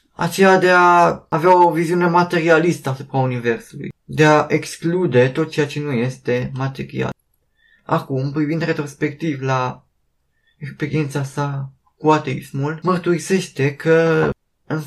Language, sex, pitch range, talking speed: Romanian, male, 130-165 Hz, 115 wpm